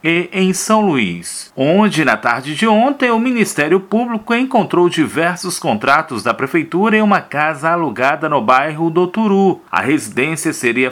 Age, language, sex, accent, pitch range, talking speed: 40-59, Portuguese, male, Brazilian, 150-185 Hz, 155 wpm